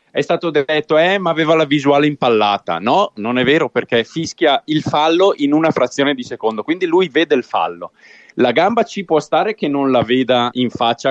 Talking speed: 205 wpm